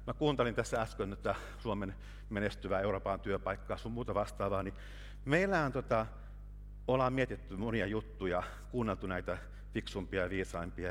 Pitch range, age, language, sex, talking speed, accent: 95-130 Hz, 50-69, Finnish, male, 130 wpm, native